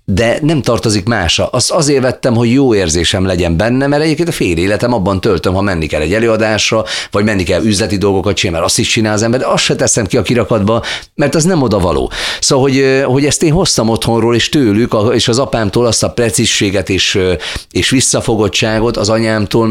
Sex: male